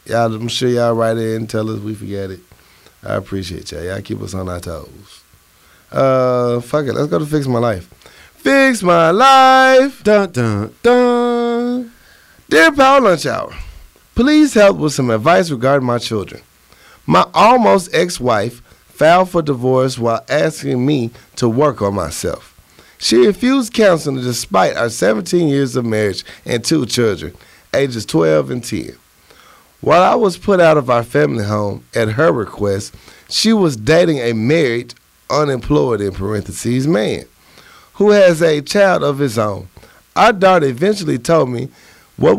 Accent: American